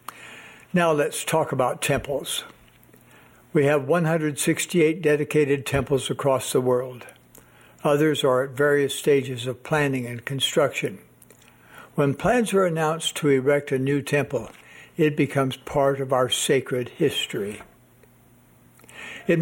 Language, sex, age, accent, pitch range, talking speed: English, male, 60-79, American, 135-170 Hz, 120 wpm